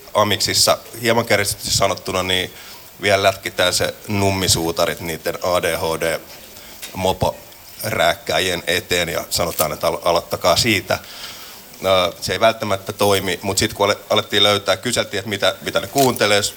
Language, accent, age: Finnish, native, 30-49